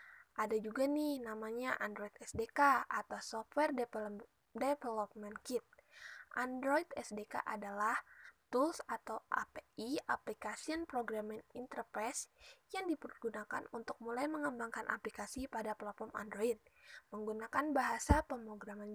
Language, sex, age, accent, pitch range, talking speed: Indonesian, female, 10-29, native, 215-275 Hz, 100 wpm